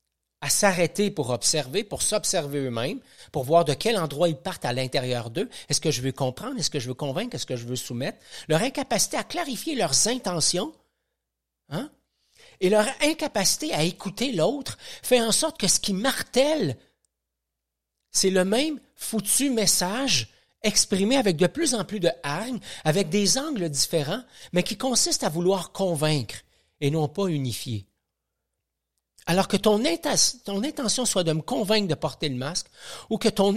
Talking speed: 170 wpm